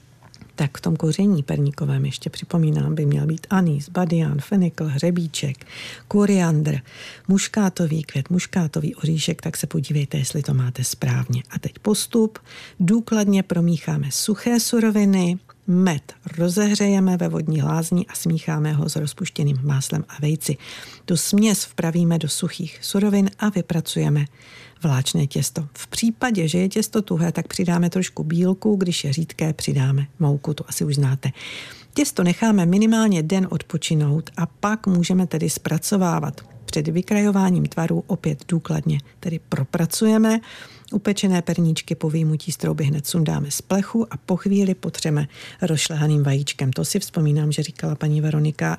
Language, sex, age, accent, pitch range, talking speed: Czech, female, 50-69, native, 150-190 Hz, 140 wpm